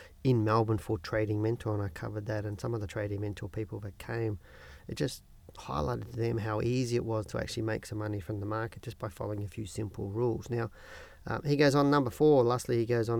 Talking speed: 240 wpm